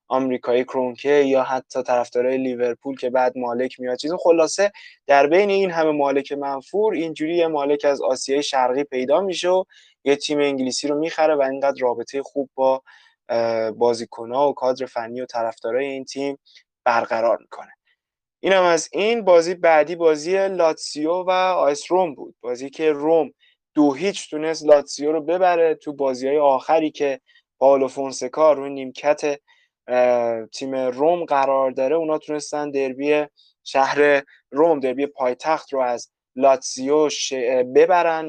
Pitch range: 130-160 Hz